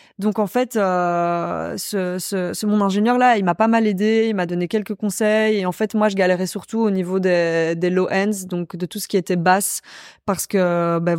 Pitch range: 180-200 Hz